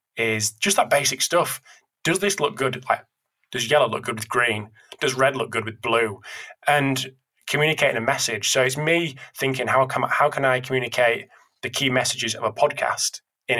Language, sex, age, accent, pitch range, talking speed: English, male, 20-39, British, 115-135 Hz, 190 wpm